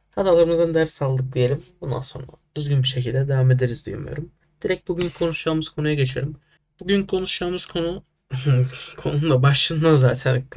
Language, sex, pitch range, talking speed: Turkish, male, 130-155 Hz, 130 wpm